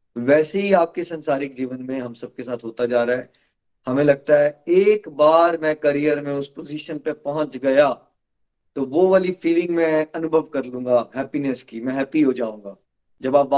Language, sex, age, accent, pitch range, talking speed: Hindi, male, 30-49, native, 130-160 Hz, 150 wpm